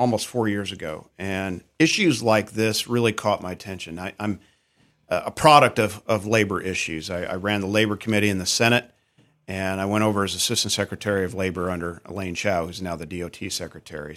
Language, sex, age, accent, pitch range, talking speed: English, male, 50-69, American, 95-120 Hz, 195 wpm